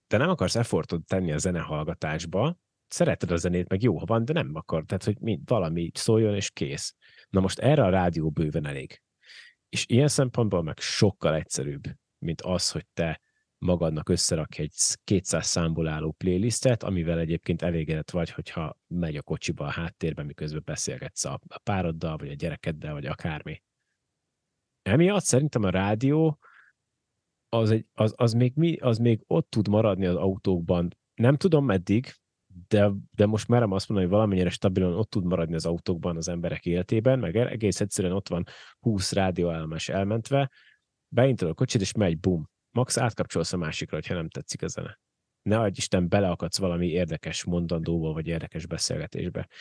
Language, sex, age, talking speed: Hungarian, male, 30-49, 165 wpm